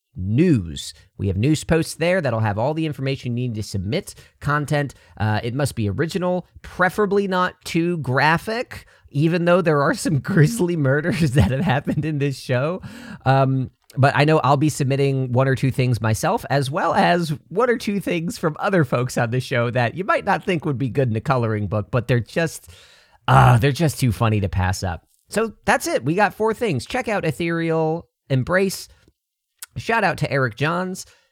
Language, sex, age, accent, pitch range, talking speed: English, male, 40-59, American, 115-170 Hz, 195 wpm